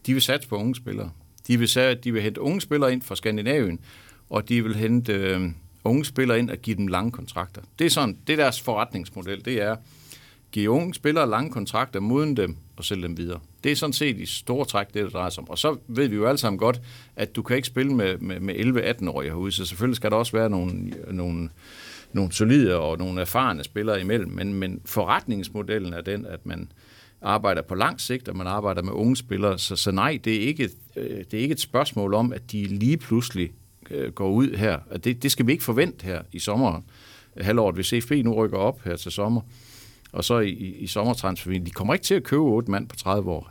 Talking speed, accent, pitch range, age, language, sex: 230 wpm, native, 95-125 Hz, 60-79, Danish, male